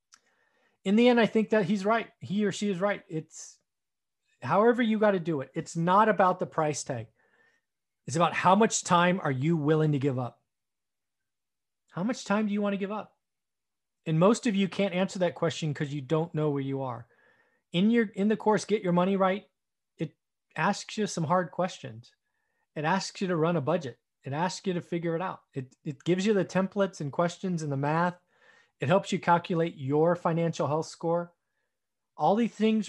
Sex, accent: male, American